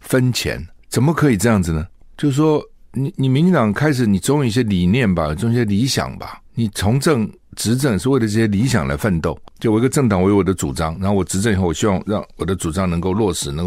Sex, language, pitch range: male, Chinese, 95-125 Hz